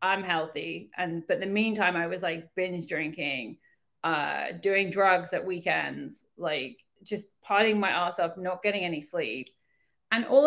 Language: English